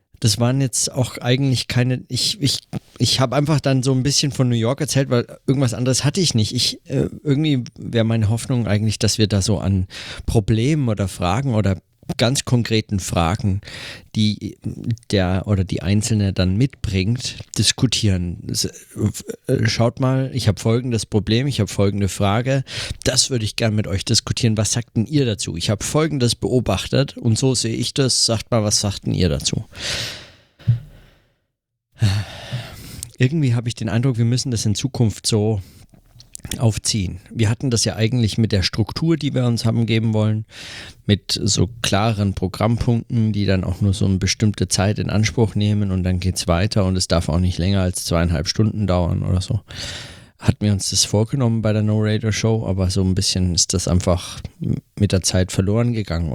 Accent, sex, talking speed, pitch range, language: German, male, 180 wpm, 100-120 Hz, German